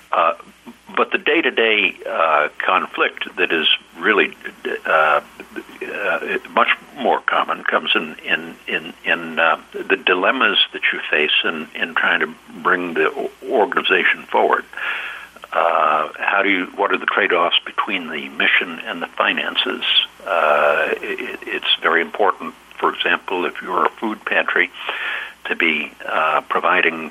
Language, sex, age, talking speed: English, male, 60-79, 140 wpm